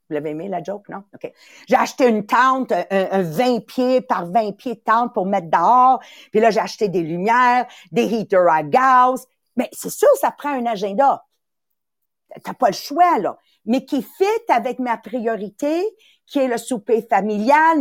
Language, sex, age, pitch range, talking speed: English, female, 50-69, 210-285 Hz, 190 wpm